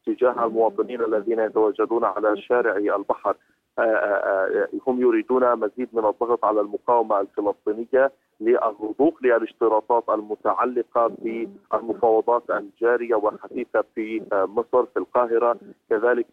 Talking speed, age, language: 105 wpm, 40-59, Arabic